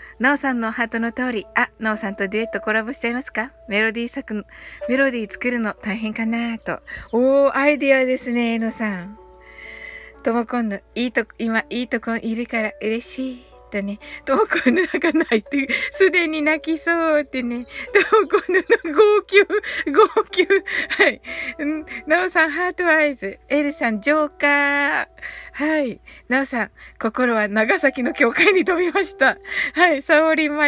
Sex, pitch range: female, 230-310 Hz